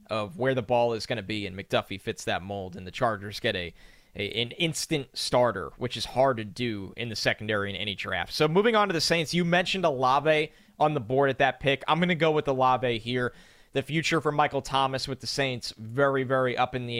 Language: English